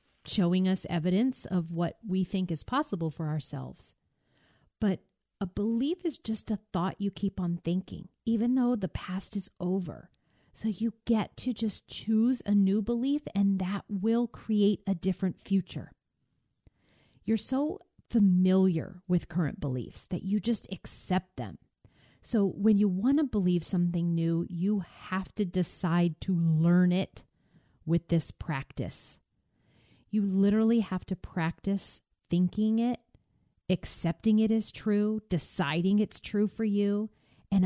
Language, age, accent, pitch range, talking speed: English, 30-49, American, 170-215 Hz, 145 wpm